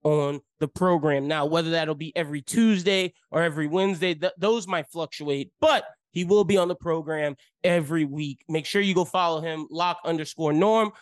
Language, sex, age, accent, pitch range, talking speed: English, male, 30-49, American, 160-230 Hz, 185 wpm